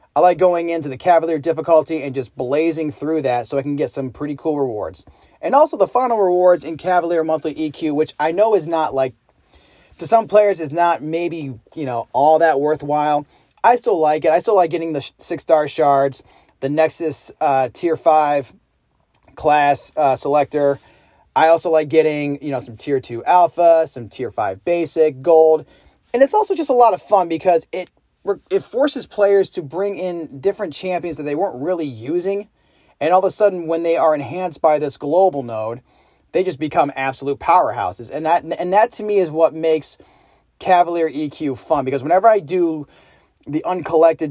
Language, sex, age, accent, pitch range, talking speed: English, male, 30-49, American, 145-175 Hz, 190 wpm